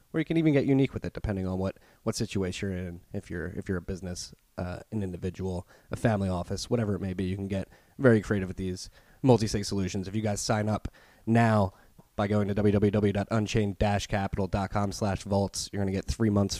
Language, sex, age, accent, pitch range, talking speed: English, male, 20-39, American, 90-105 Hz, 215 wpm